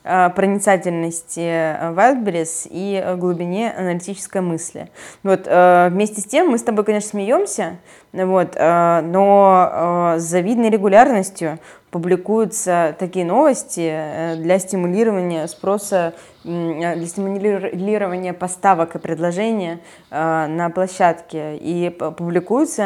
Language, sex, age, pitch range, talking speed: Russian, female, 20-39, 165-195 Hz, 85 wpm